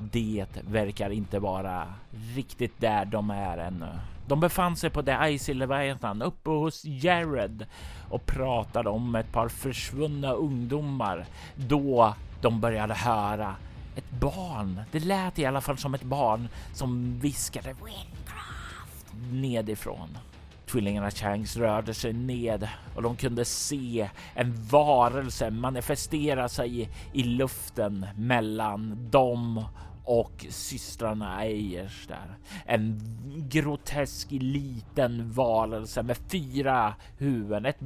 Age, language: 30-49, Swedish